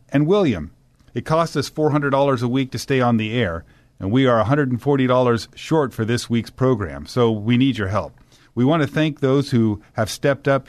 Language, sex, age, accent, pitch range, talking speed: English, male, 50-69, American, 110-135 Hz, 200 wpm